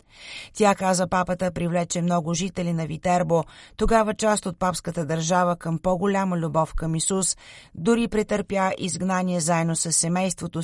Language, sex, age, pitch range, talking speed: Bulgarian, female, 30-49, 165-190 Hz, 135 wpm